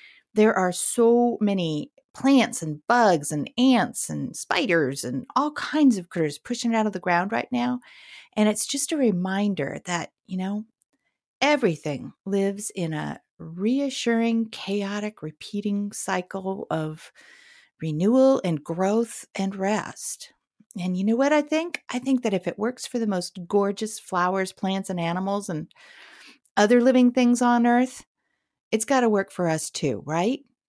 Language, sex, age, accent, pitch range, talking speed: English, female, 40-59, American, 175-245 Hz, 155 wpm